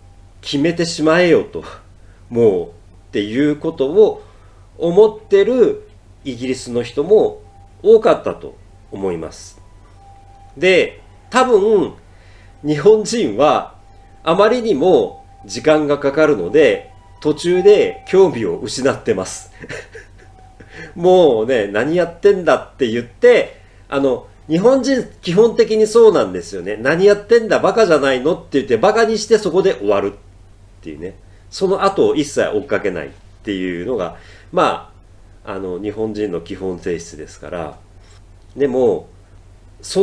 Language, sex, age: Japanese, male, 40-59